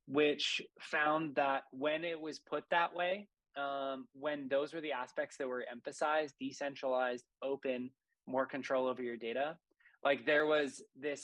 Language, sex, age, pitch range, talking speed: English, male, 20-39, 135-160 Hz, 155 wpm